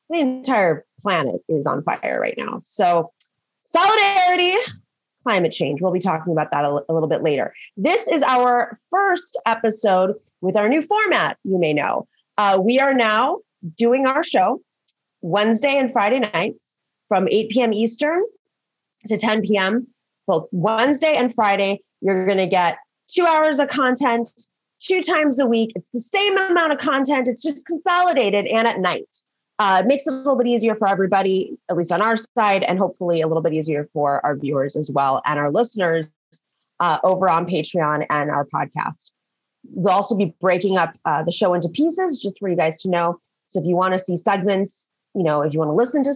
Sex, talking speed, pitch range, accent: female, 190 wpm, 165-270 Hz, American